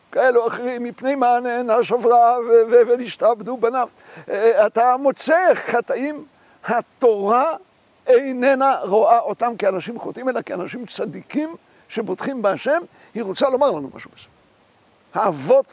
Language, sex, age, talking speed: Hebrew, male, 60-79, 115 wpm